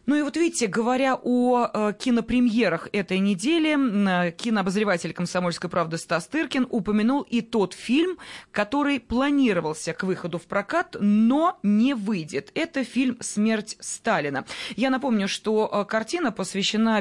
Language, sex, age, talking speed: Russian, female, 20-39, 125 wpm